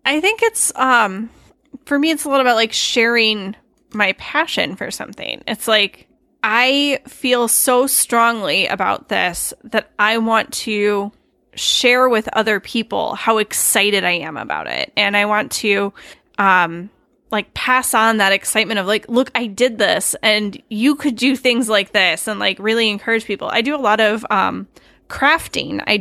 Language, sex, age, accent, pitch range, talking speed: English, female, 10-29, American, 205-245 Hz, 170 wpm